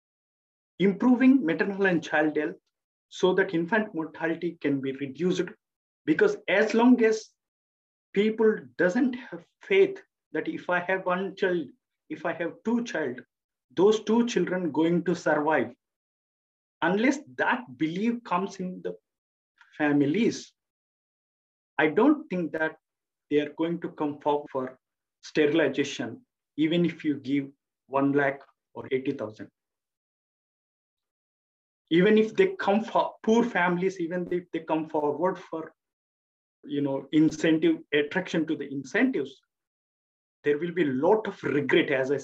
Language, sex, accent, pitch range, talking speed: English, male, Indian, 145-190 Hz, 130 wpm